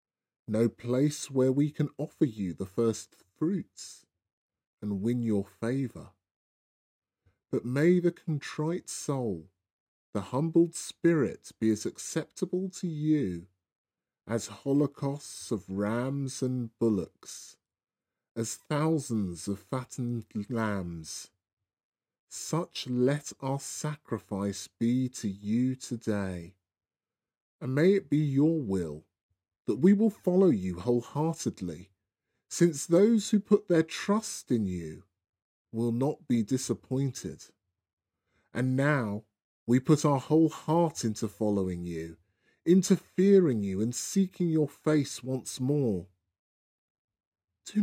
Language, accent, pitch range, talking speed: English, British, 100-150 Hz, 115 wpm